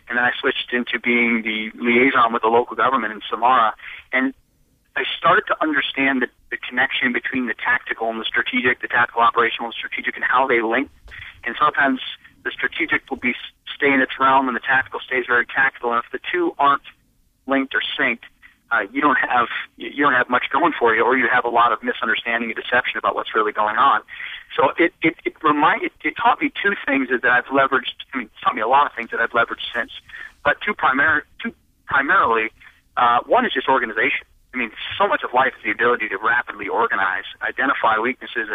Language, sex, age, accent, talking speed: English, male, 50-69, American, 210 wpm